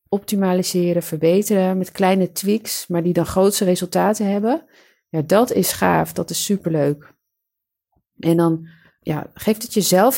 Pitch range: 160-195 Hz